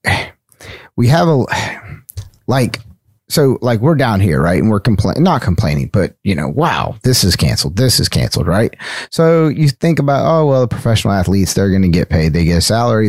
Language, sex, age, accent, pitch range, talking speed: English, male, 30-49, American, 90-115 Hz, 200 wpm